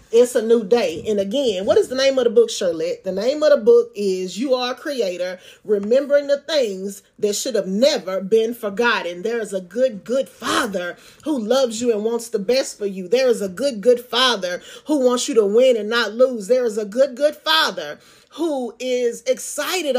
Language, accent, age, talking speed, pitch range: English, American, 30-49, 210 wpm, 215-290 Hz